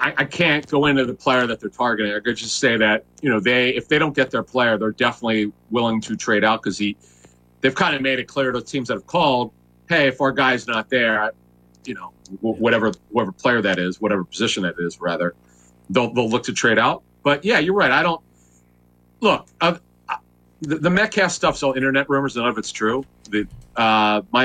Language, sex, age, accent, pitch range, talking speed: English, male, 40-59, American, 95-145 Hz, 215 wpm